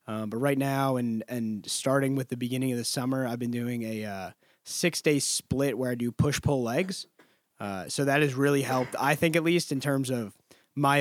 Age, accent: 20-39, American